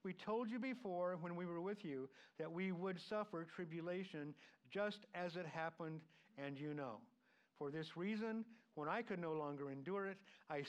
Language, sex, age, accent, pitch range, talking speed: English, male, 50-69, American, 145-190 Hz, 180 wpm